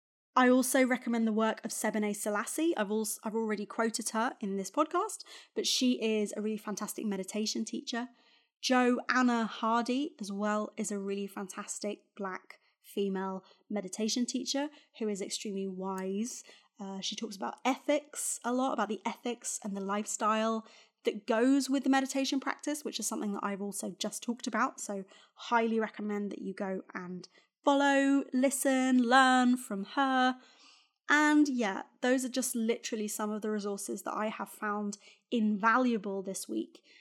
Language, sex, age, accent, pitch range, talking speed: English, female, 20-39, British, 205-250 Hz, 160 wpm